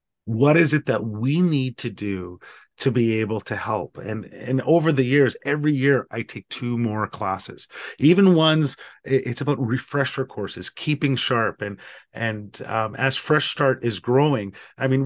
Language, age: English, 30-49